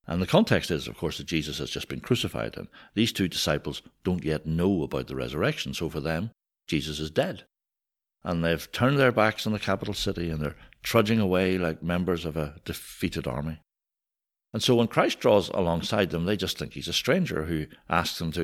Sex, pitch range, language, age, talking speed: male, 80-100 Hz, English, 60-79, 210 wpm